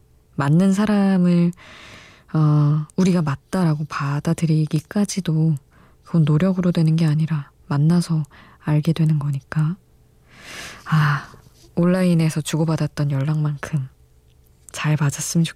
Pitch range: 150-175 Hz